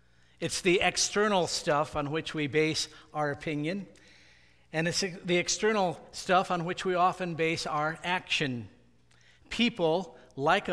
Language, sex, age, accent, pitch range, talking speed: English, male, 50-69, American, 145-185 Hz, 135 wpm